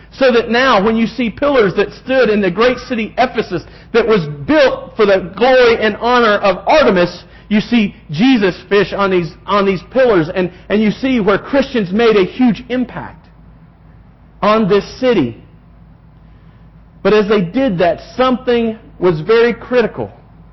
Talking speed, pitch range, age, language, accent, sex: 160 wpm, 160-220 Hz, 40-59, English, American, male